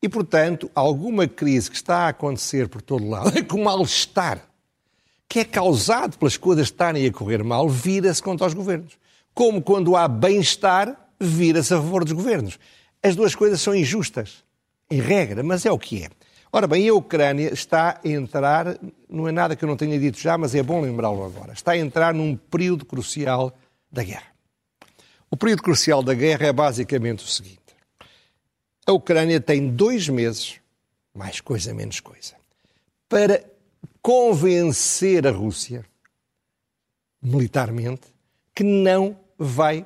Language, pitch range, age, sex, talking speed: Portuguese, 125-185 Hz, 60-79, male, 155 wpm